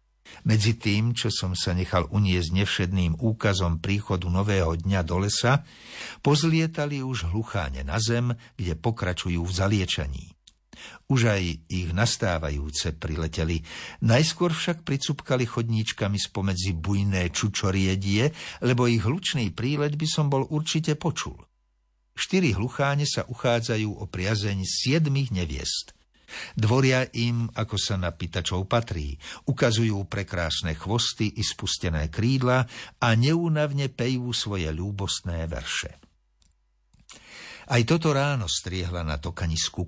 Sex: male